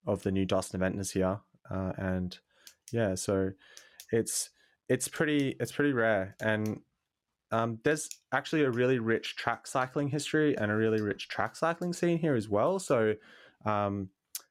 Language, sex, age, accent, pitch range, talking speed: English, male, 20-39, Australian, 95-110 Hz, 160 wpm